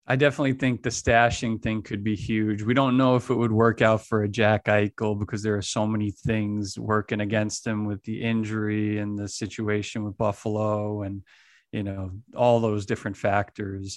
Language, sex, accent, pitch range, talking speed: English, male, American, 105-120 Hz, 195 wpm